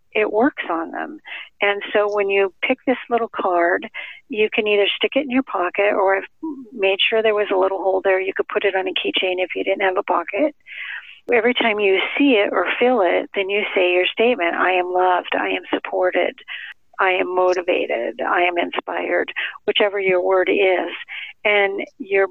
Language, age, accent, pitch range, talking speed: English, 50-69, American, 185-215 Hz, 200 wpm